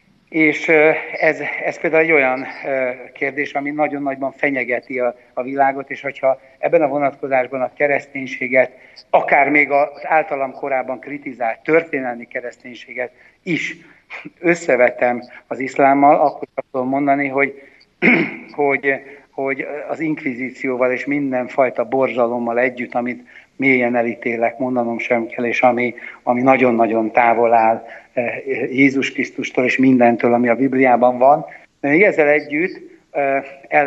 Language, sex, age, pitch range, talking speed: Slovak, male, 60-79, 125-140 Hz, 120 wpm